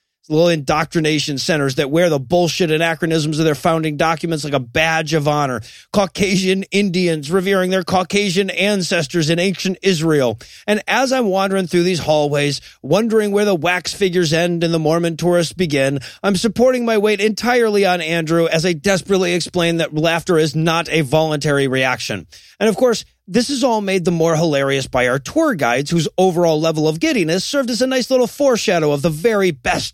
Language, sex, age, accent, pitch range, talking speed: English, male, 30-49, American, 155-200 Hz, 180 wpm